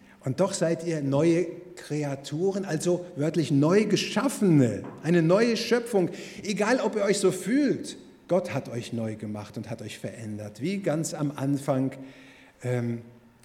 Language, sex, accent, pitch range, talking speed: German, male, German, 140-190 Hz, 145 wpm